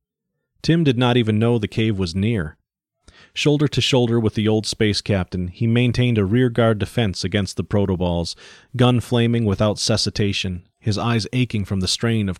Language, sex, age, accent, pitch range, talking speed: English, male, 30-49, American, 95-115 Hz, 175 wpm